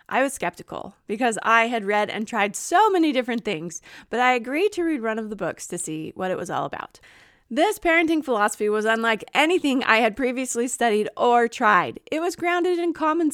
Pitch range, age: 210-285 Hz, 30-49